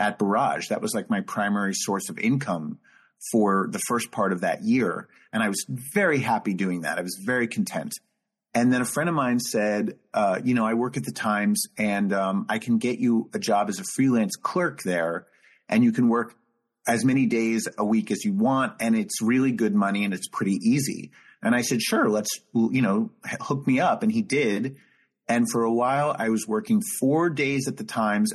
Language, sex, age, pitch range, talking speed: English, male, 30-49, 110-170 Hz, 215 wpm